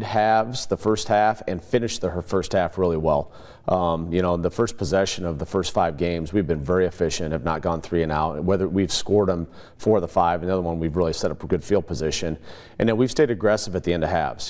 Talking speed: 255 wpm